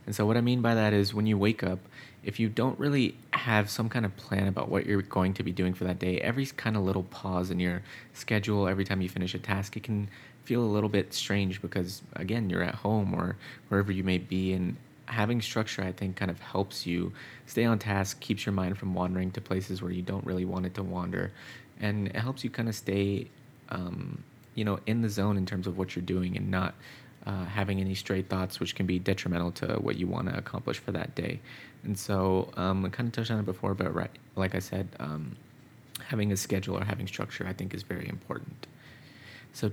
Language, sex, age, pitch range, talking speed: English, male, 20-39, 95-115 Hz, 235 wpm